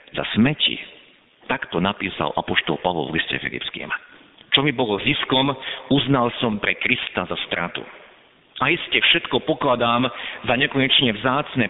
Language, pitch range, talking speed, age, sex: Slovak, 110-145 Hz, 145 wpm, 50-69, male